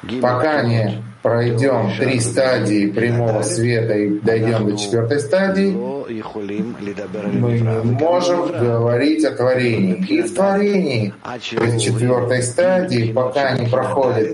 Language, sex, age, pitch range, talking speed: Russian, male, 30-49, 110-155 Hz, 105 wpm